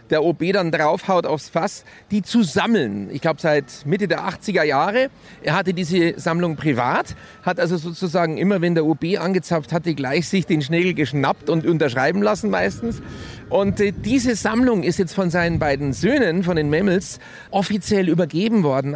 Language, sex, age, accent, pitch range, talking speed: German, male, 40-59, German, 165-215 Hz, 175 wpm